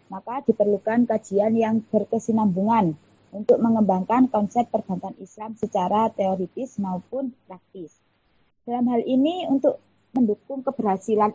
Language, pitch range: Indonesian, 195-235 Hz